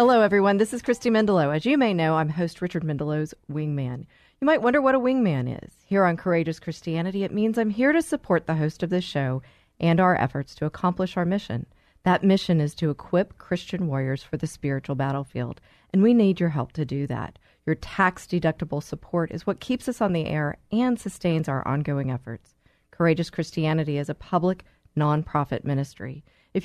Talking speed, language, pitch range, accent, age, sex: 195 wpm, English, 145-195 Hz, American, 40-59, female